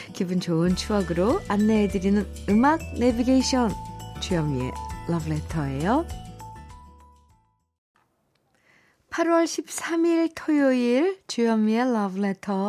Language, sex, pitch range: Korean, female, 160-235 Hz